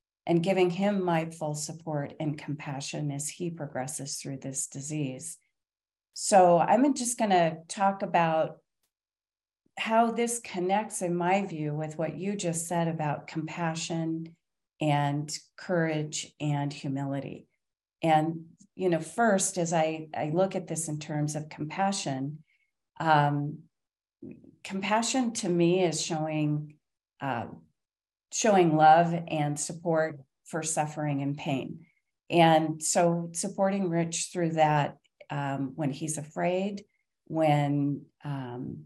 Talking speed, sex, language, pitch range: 120 wpm, female, English, 150-180 Hz